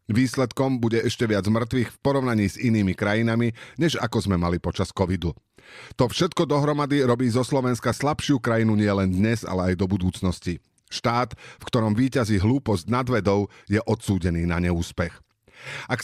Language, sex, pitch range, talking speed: Slovak, male, 95-125 Hz, 155 wpm